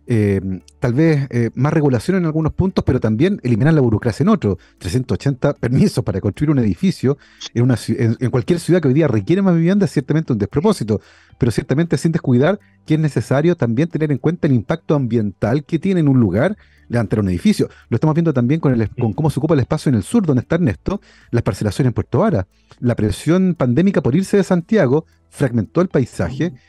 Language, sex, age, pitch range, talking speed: Spanish, male, 40-59, 115-175 Hz, 205 wpm